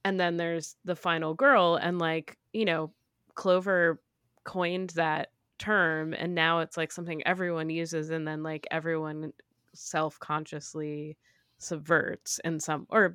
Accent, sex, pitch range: American, female, 155-190 Hz